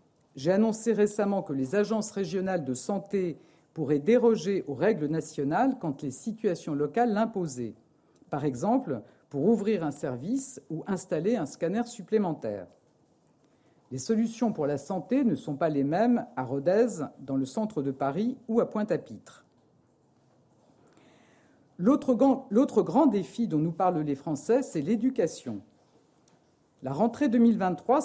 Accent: French